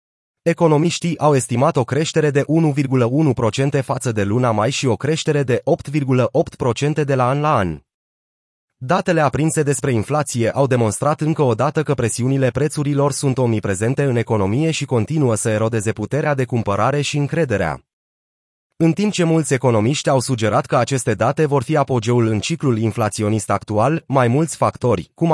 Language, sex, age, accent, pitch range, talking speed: Romanian, male, 30-49, native, 120-150 Hz, 160 wpm